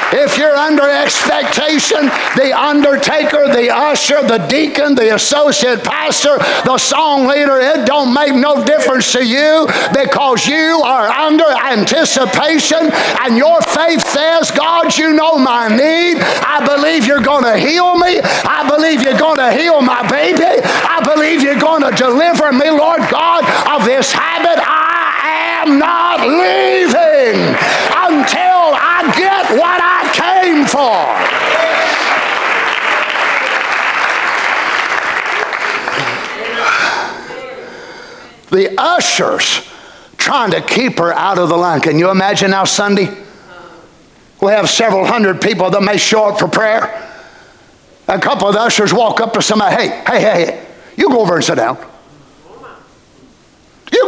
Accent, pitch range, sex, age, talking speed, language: American, 235-315 Hz, male, 50-69, 130 wpm, English